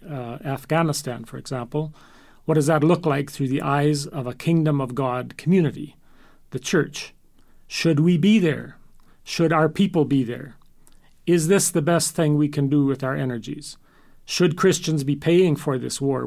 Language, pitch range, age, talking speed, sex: English, 135-165 Hz, 40-59, 175 wpm, male